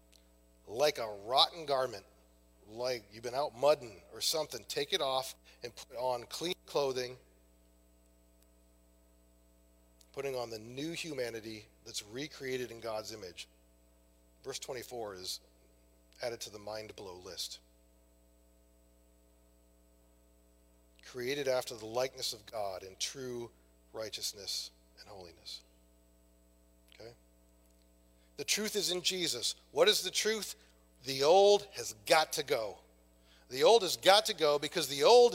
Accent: American